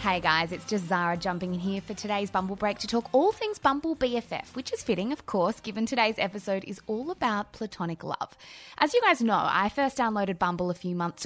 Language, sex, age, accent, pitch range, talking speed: English, female, 20-39, Australian, 185-250 Hz, 225 wpm